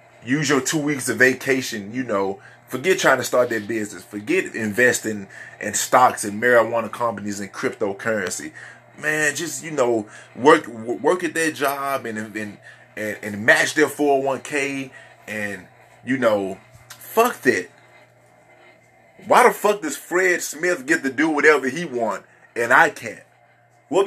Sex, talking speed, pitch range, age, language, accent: male, 150 wpm, 115-160 Hz, 30-49, English, American